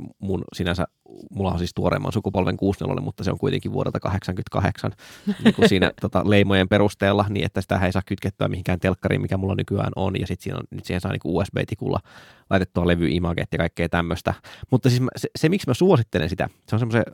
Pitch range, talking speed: 95-125 Hz, 205 wpm